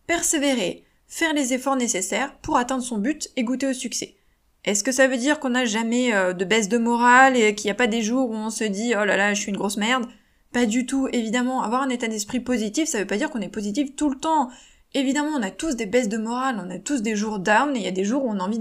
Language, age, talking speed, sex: French, 20-39, 285 wpm, female